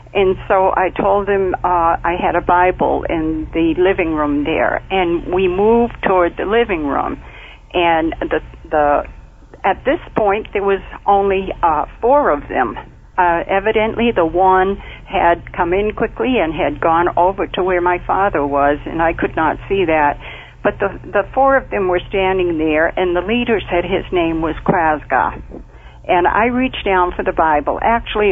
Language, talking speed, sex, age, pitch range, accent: English, 175 wpm, female, 60-79, 160-200 Hz, American